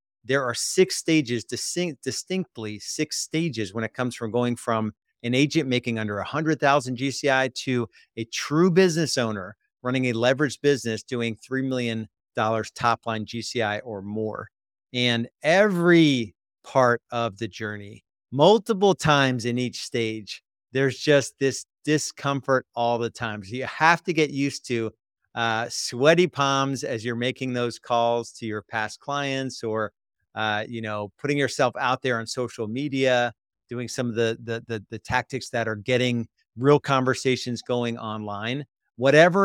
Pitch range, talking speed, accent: 115-140 Hz, 150 wpm, American